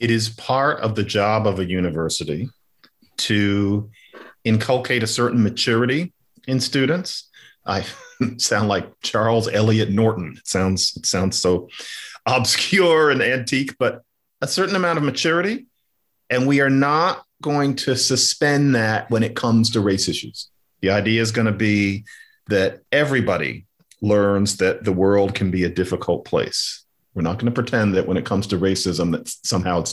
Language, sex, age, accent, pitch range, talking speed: English, male, 40-59, American, 105-145 Hz, 160 wpm